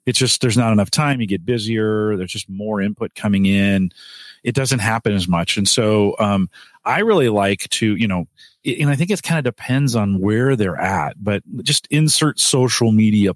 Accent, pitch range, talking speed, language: American, 100-130 Hz, 200 wpm, English